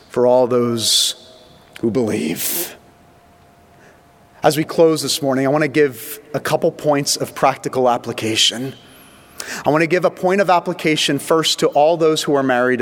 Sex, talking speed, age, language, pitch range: male, 165 wpm, 30-49, English, 125-165 Hz